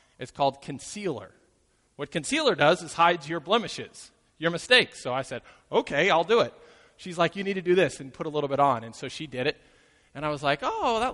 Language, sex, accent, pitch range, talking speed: English, male, American, 140-195 Hz, 230 wpm